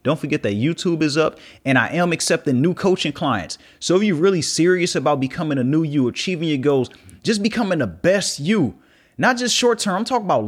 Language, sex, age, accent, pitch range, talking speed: English, male, 30-49, American, 135-175 Hz, 220 wpm